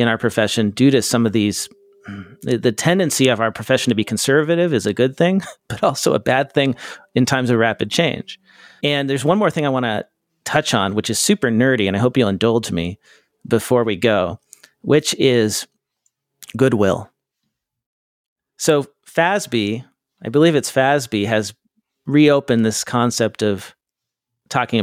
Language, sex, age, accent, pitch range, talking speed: English, male, 40-59, American, 110-135 Hz, 165 wpm